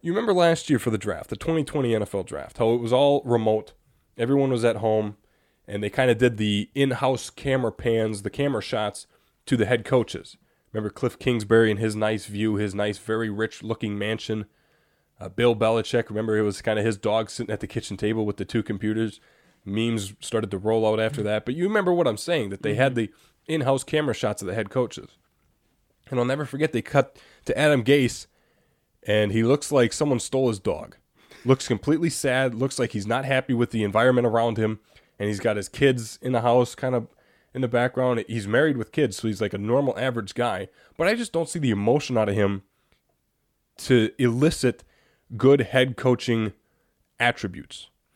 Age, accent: 20-39, American